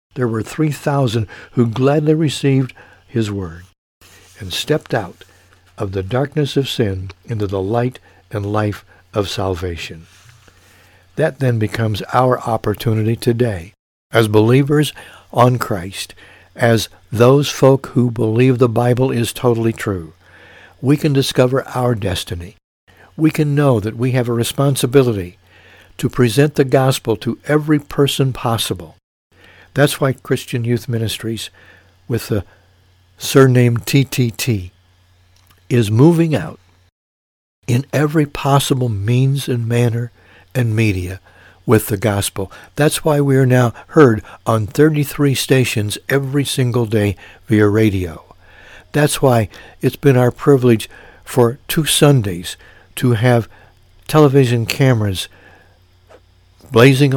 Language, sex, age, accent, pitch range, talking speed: English, male, 60-79, American, 95-130 Hz, 120 wpm